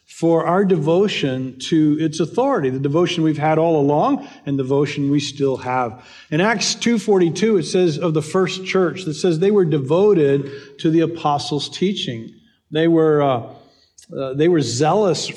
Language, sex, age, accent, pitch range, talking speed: English, male, 50-69, American, 145-195 Hz, 165 wpm